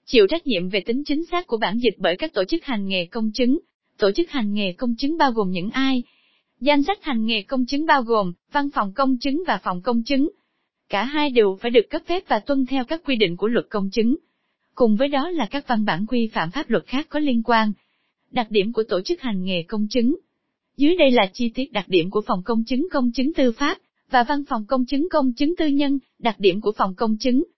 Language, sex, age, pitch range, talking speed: Vietnamese, female, 20-39, 220-285 Hz, 250 wpm